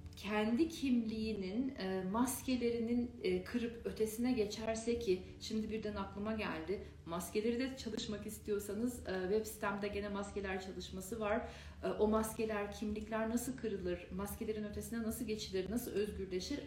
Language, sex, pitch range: Turkish, female, 195-240 Hz